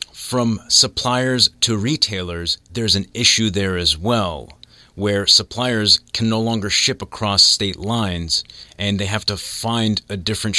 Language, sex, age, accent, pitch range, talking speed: English, male, 30-49, American, 90-115 Hz, 145 wpm